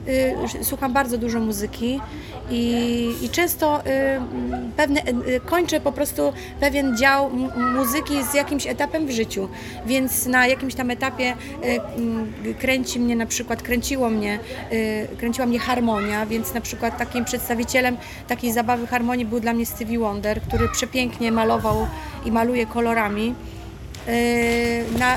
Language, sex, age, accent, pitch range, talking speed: Polish, female, 30-49, native, 235-280 Hz, 120 wpm